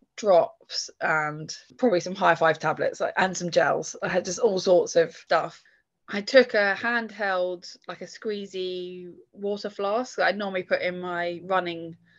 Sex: female